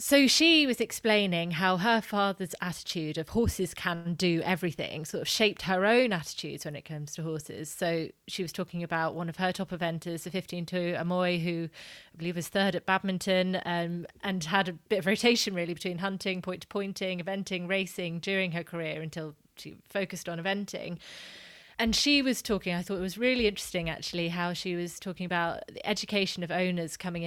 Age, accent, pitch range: 30-49, British, 170-195 Hz